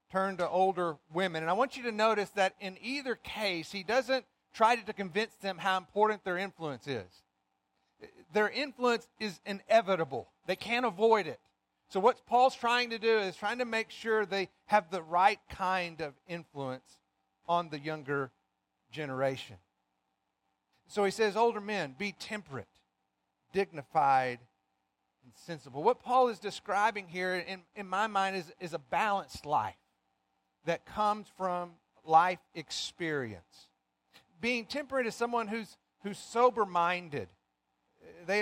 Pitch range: 165-215 Hz